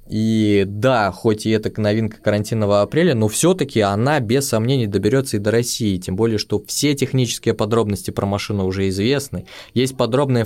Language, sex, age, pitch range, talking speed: English, male, 20-39, 105-125 Hz, 165 wpm